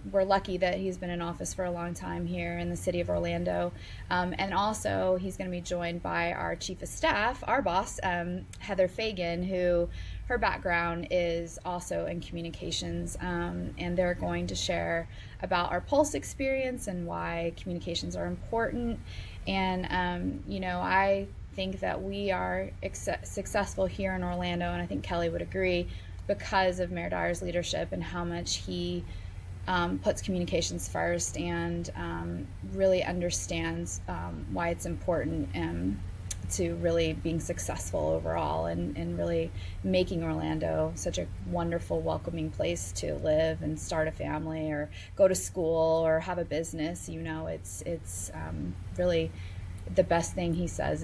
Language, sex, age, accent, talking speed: English, female, 20-39, American, 160 wpm